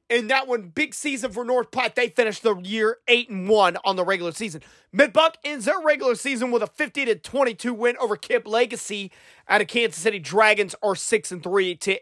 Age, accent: 30-49, American